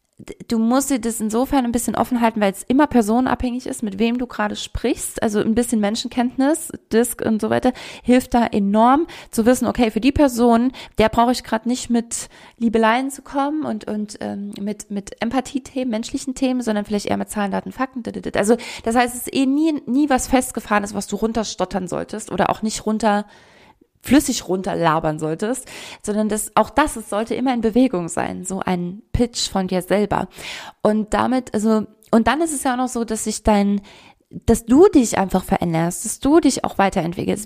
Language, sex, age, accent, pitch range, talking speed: German, female, 20-39, German, 210-255 Hz, 200 wpm